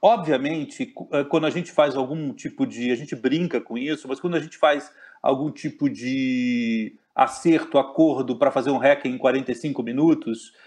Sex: male